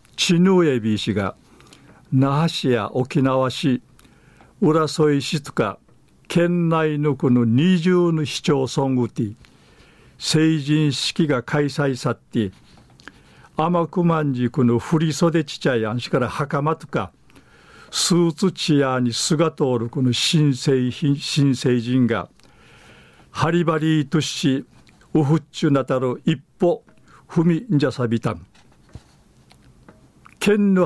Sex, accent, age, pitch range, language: male, native, 50-69, 125-160 Hz, Japanese